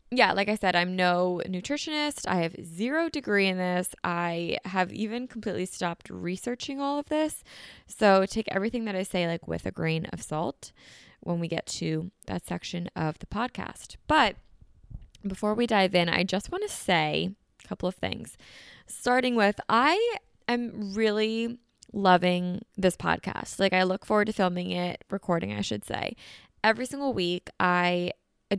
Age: 20-39